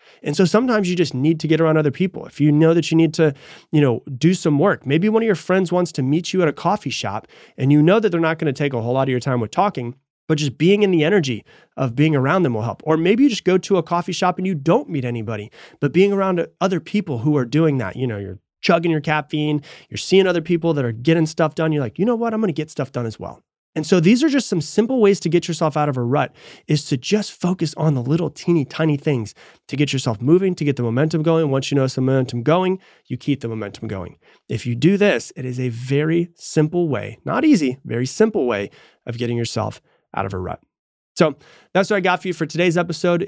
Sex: male